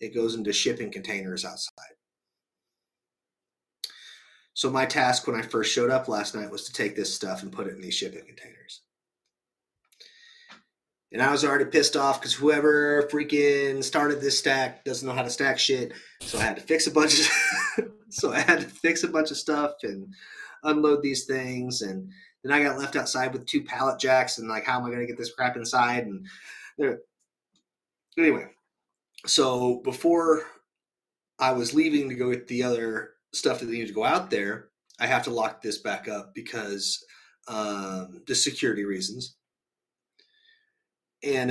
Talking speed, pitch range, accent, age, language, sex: 175 wpm, 110-150 Hz, American, 30-49, English, male